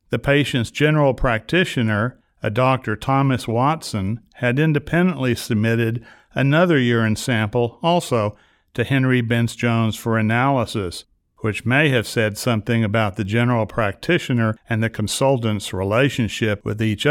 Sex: male